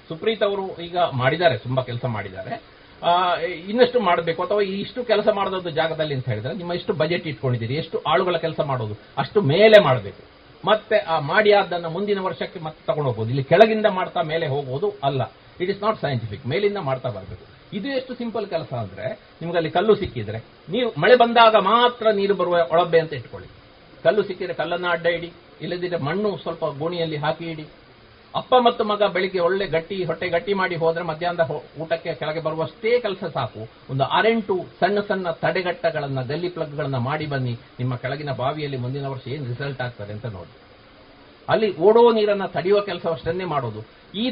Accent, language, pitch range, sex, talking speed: native, Kannada, 130-195 Hz, male, 160 wpm